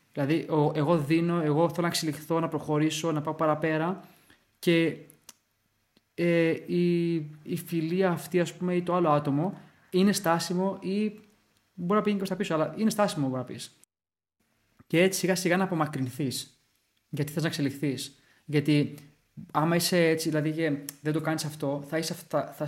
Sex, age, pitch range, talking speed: male, 20-39, 145-170 Hz, 155 wpm